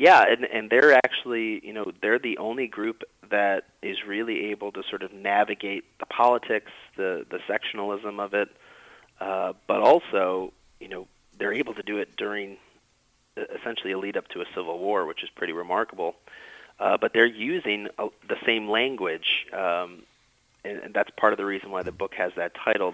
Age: 30-49